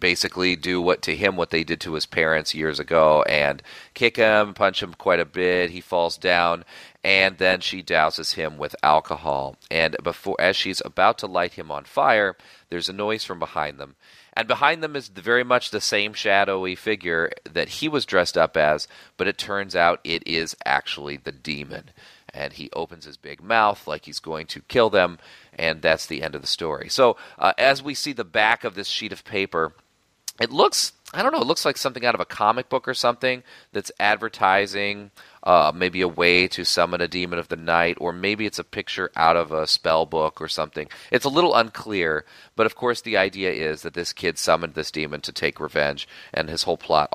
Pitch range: 80-105 Hz